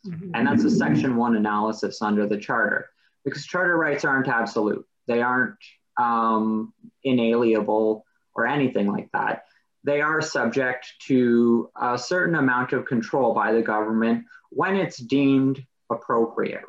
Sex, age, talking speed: male, 20-39, 135 wpm